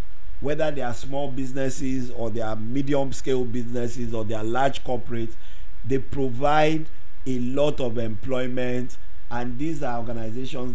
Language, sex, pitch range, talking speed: English, male, 105-130 Hz, 145 wpm